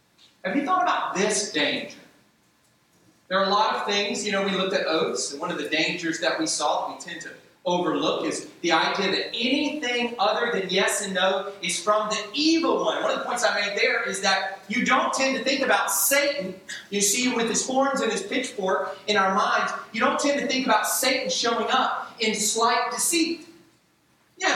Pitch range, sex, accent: 155-260 Hz, male, American